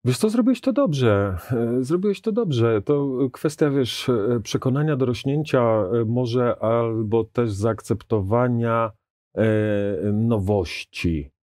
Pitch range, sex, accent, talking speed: 95-115 Hz, male, native, 100 wpm